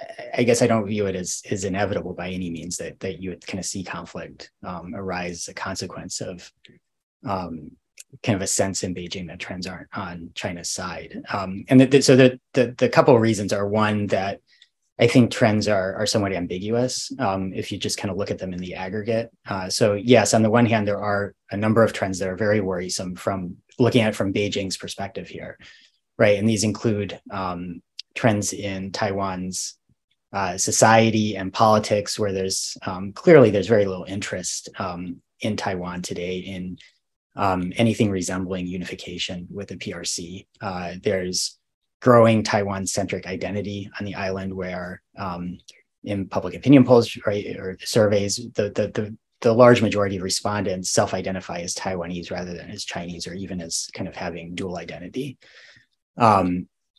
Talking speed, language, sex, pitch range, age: 180 wpm, English, male, 90-110 Hz, 20-39